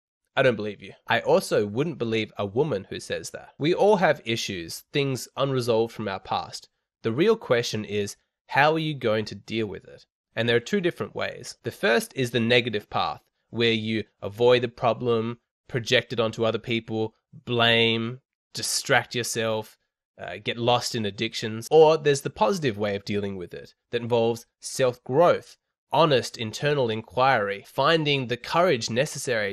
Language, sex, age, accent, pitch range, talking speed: English, male, 20-39, Australian, 110-130 Hz, 170 wpm